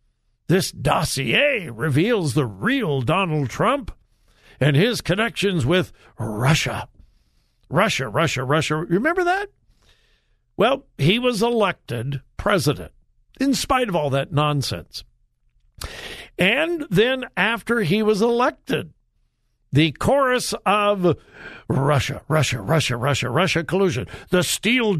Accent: American